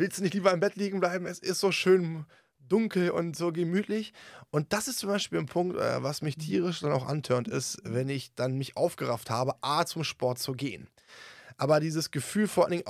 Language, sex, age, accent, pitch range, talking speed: German, male, 20-39, German, 130-175 Hz, 220 wpm